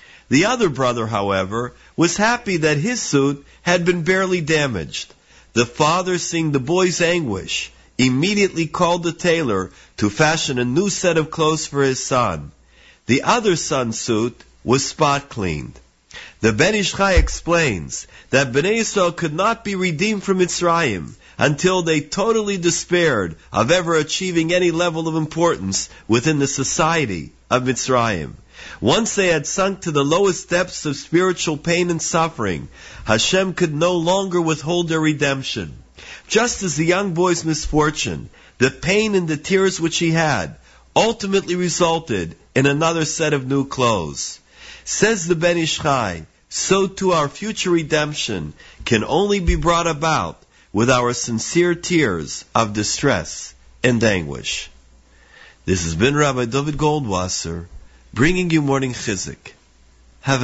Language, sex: English, male